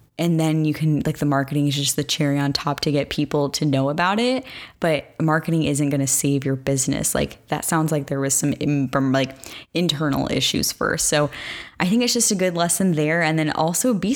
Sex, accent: female, American